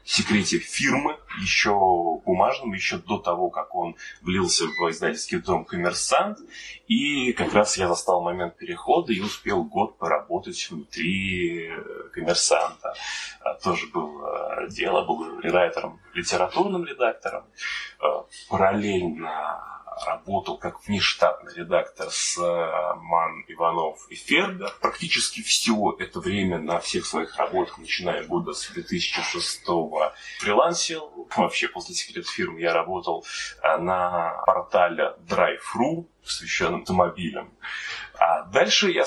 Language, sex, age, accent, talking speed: Russian, male, 20-39, native, 110 wpm